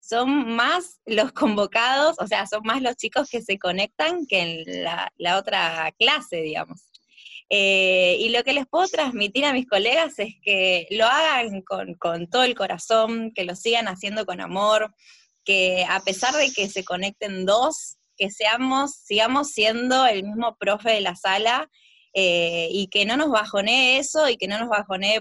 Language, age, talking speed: Spanish, 20-39, 180 wpm